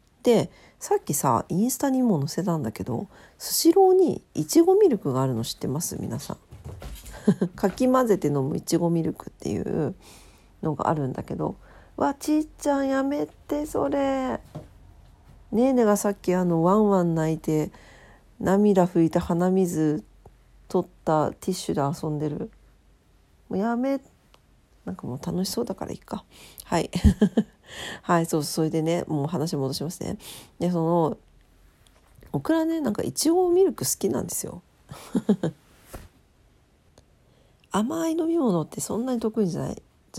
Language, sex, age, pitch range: Japanese, female, 40-59, 155-250 Hz